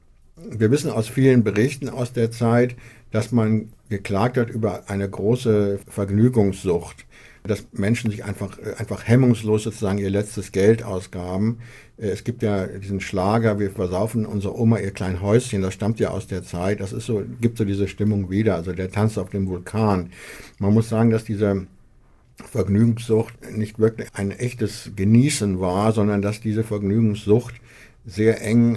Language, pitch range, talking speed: German, 95-115 Hz, 160 wpm